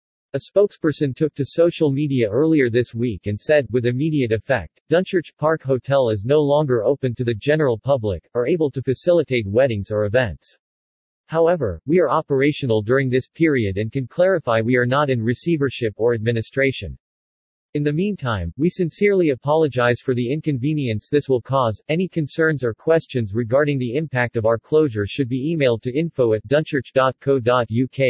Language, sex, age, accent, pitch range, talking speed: English, male, 40-59, American, 120-150 Hz, 165 wpm